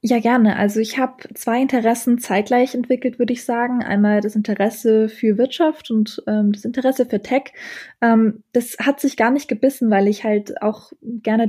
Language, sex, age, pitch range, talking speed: German, female, 20-39, 210-240 Hz, 185 wpm